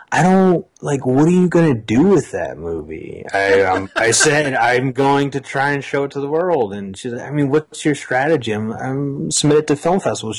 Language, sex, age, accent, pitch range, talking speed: English, male, 30-49, American, 110-145 Hz, 235 wpm